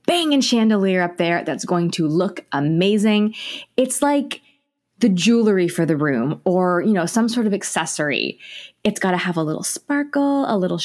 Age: 20-39